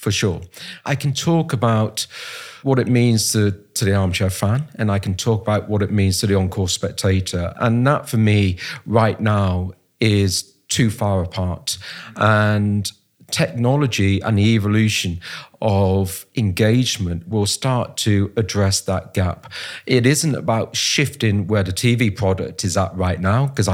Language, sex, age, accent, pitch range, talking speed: English, male, 40-59, British, 95-115 Hz, 155 wpm